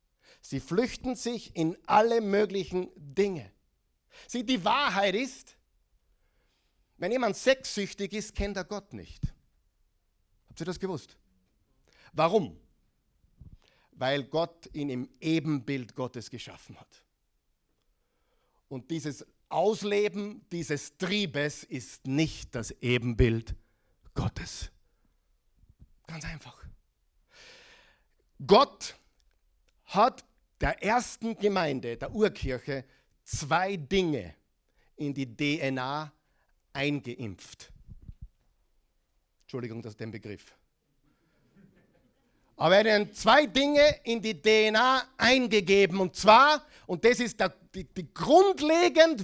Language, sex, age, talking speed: German, male, 50-69, 95 wpm